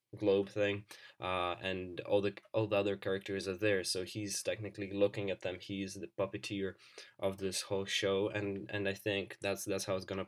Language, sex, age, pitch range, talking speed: English, male, 10-29, 95-110 Hz, 200 wpm